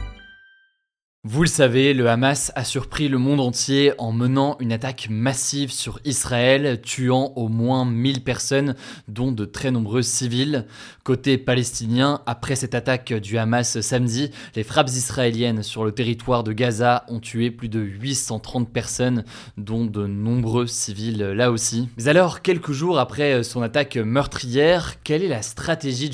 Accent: French